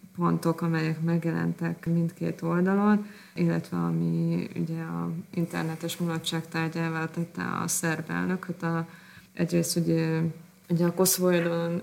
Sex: female